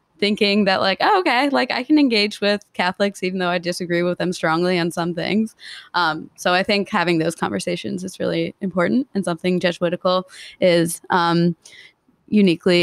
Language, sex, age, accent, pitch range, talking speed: English, female, 20-39, American, 175-200 Hz, 175 wpm